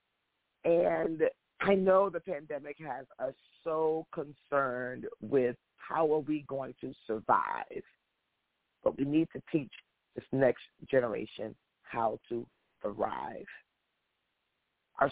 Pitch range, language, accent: 130-160 Hz, English, American